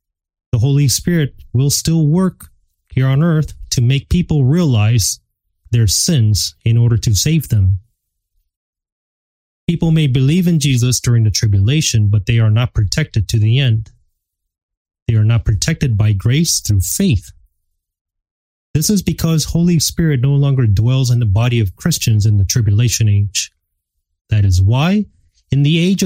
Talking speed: 155 wpm